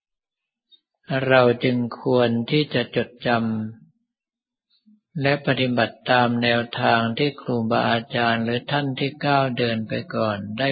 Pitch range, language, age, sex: 115-135 Hz, Thai, 60-79, male